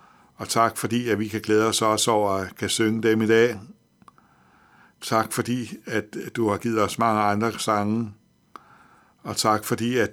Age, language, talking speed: 60-79, Danish, 180 wpm